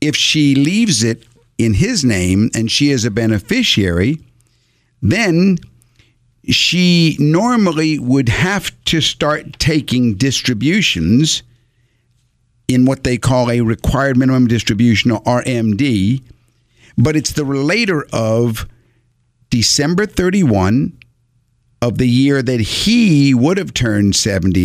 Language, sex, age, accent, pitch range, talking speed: English, male, 50-69, American, 115-145 Hz, 115 wpm